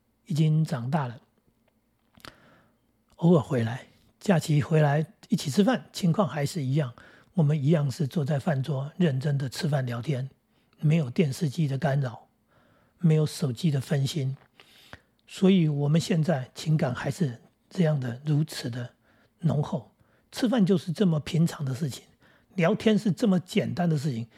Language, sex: Chinese, male